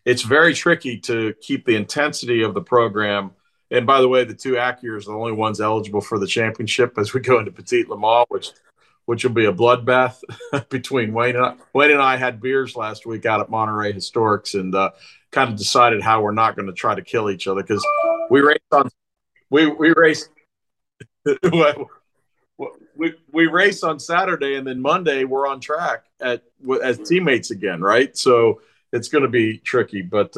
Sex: male